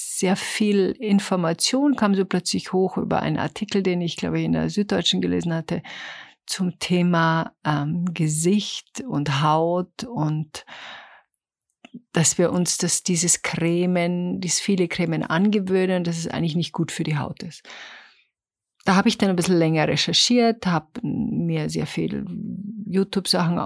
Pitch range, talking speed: 170-205 Hz, 145 wpm